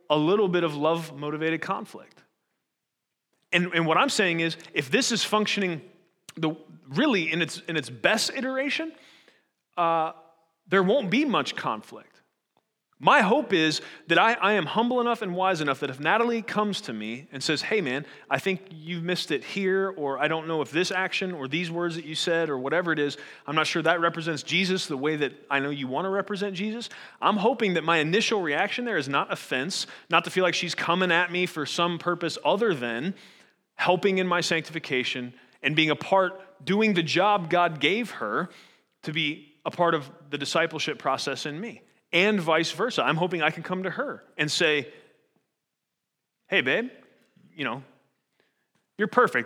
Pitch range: 150-195 Hz